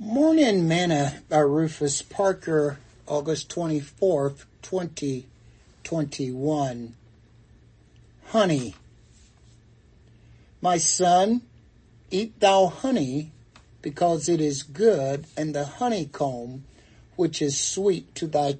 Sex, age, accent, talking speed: male, 60-79, American, 85 wpm